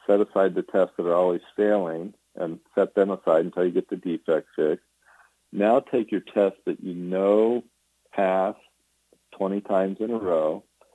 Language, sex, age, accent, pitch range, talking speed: English, male, 50-69, American, 85-95 Hz, 170 wpm